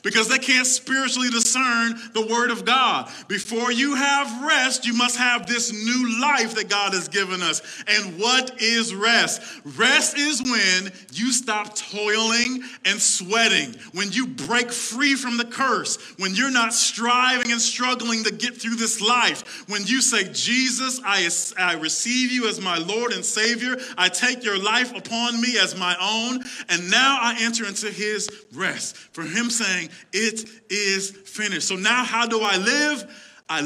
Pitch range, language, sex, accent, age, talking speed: 190-240 Hz, English, male, American, 40-59, 170 wpm